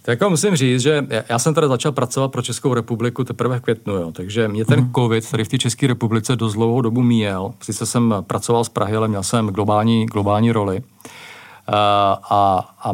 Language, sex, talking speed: Czech, male, 195 wpm